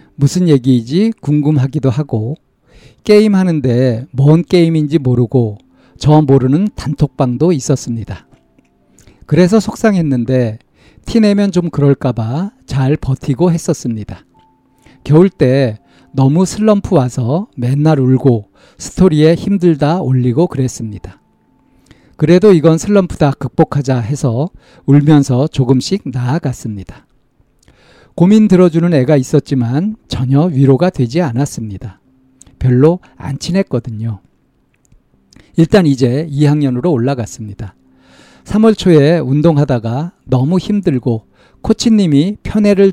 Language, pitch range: Korean, 125-170 Hz